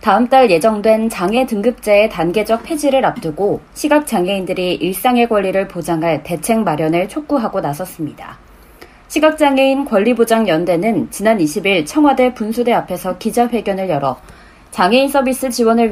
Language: Korean